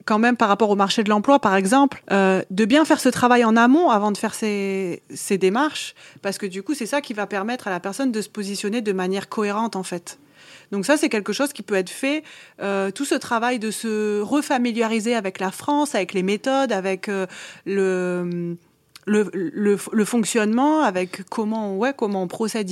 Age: 30-49